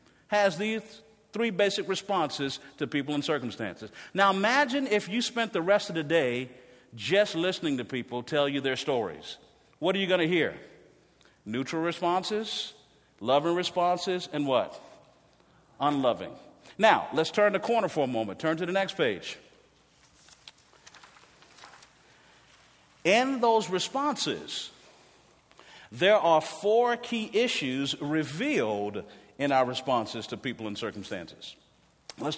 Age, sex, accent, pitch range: 50-69, male, American, 130-195 Hz